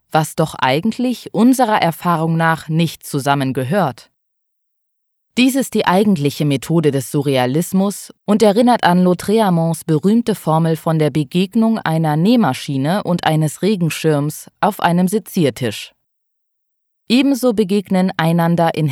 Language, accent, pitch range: German, German, 150-195 Hz